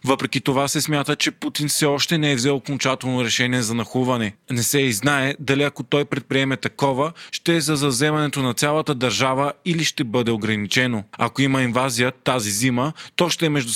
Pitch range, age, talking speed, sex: 125-150 Hz, 20-39, 190 wpm, male